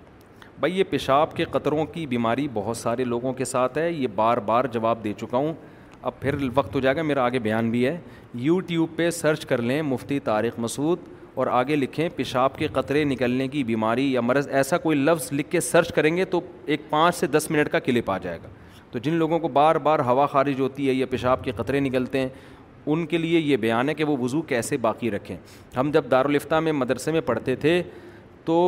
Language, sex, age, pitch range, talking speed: Urdu, male, 40-59, 130-170 Hz, 220 wpm